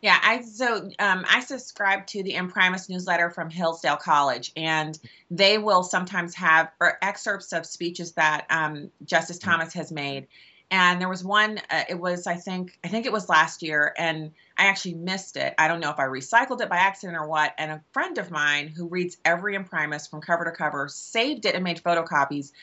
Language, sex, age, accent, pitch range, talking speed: English, female, 30-49, American, 160-195 Hz, 200 wpm